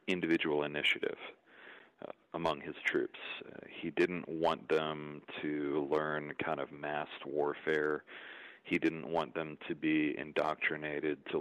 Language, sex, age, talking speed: English, male, 40-59, 130 wpm